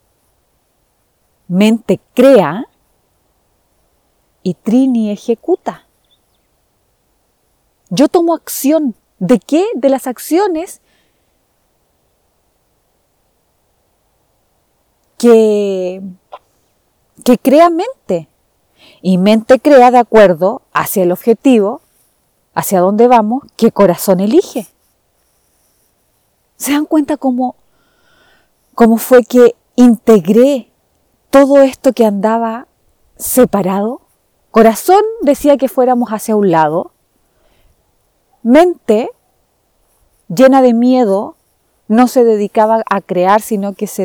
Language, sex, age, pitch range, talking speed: Spanish, female, 40-59, 205-285 Hz, 85 wpm